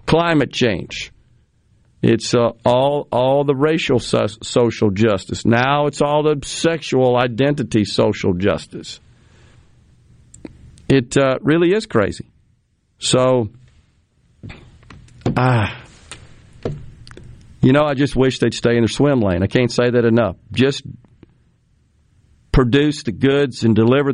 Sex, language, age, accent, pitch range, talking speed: male, English, 50-69, American, 115-145 Hz, 120 wpm